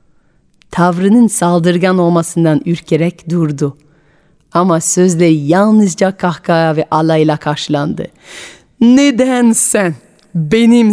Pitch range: 165-210 Hz